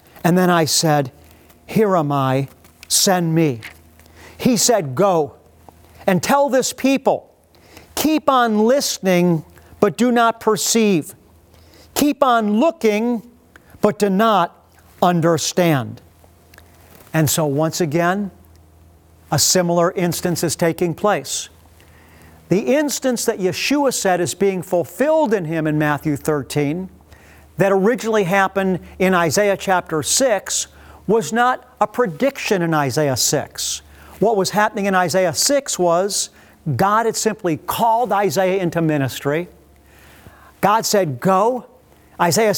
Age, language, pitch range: 50-69, English, 145-210 Hz